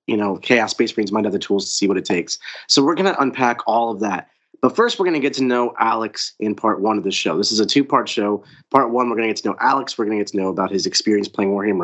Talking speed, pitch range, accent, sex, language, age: 315 wpm, 100-130 Hz, American, male, English, 30-49